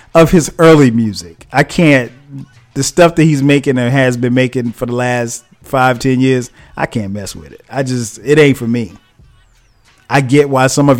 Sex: male